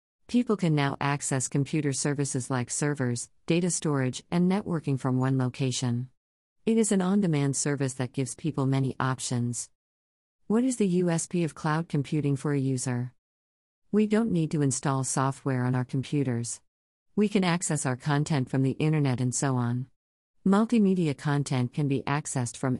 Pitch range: 130-160 Hz